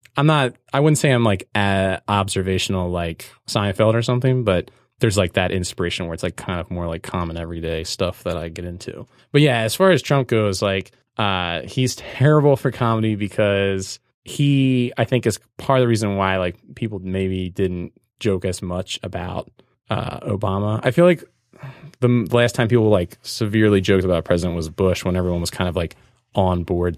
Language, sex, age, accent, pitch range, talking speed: English, male, 20-39, American, 90-125 Hz, 195 wpm